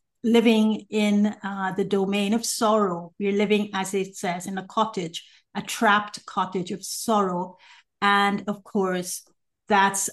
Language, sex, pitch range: English, female, 190-225 Hz